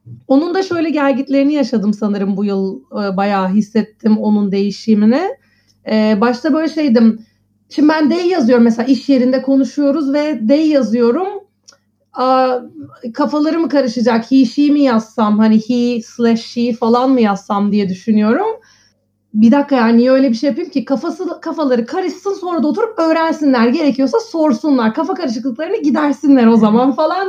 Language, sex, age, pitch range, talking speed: Turkish, female, 30-49, 230-300 Hz, 140 wpm